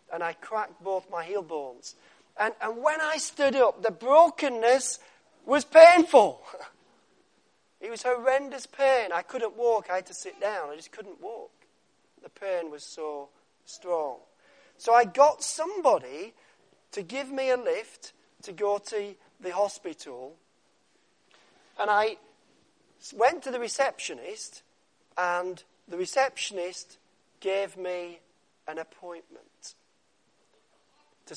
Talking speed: 125 wpm